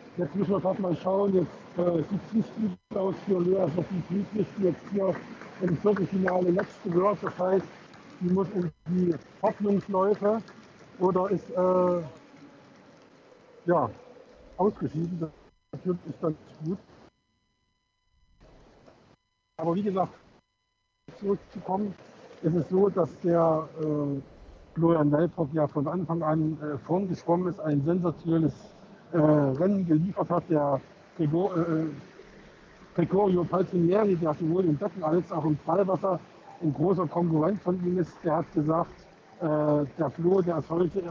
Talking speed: 135 wpm